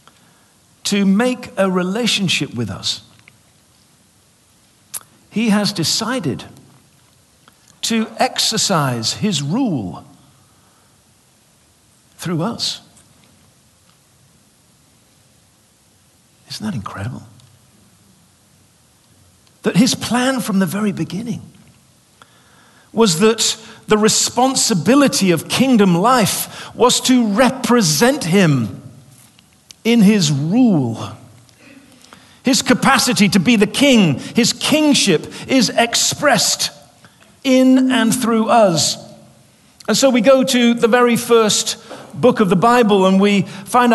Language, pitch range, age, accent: English, 170-235 Hz, 50-69, British